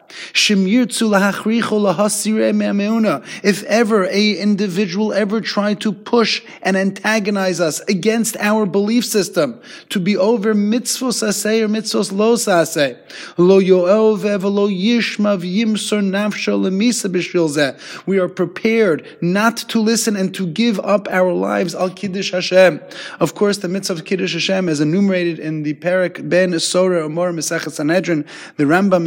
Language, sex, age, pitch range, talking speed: English, male, 30-49, 165-205 Hz, 130 wpm